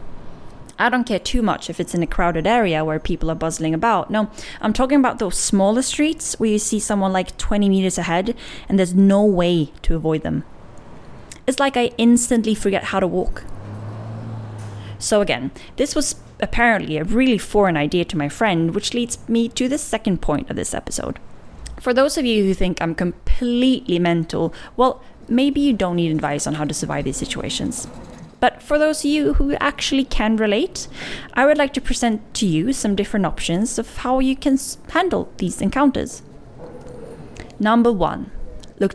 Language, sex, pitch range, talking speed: Swedish, female, 170-240 Hz, 180 wpm